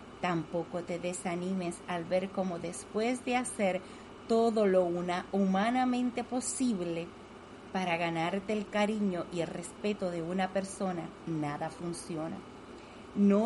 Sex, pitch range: female, 185-230 Hz